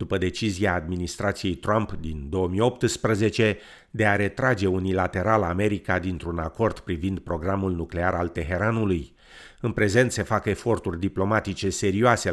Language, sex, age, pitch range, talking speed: Romanian, male, 50-69, 90-110 Hz, 120 wpm